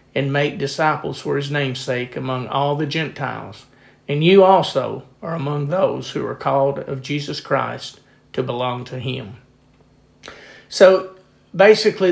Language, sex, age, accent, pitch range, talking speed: English, male, 40-59, American, 130-155 Hz, 140 wpm